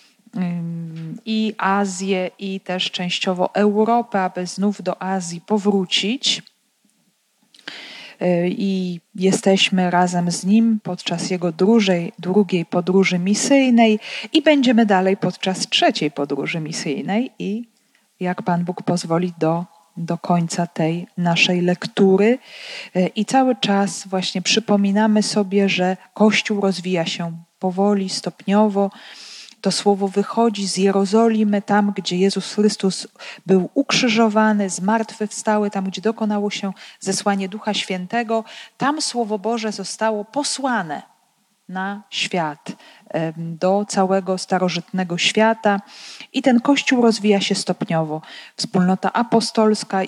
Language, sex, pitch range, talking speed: Polish, female, 185-220 Hz, 110 wpm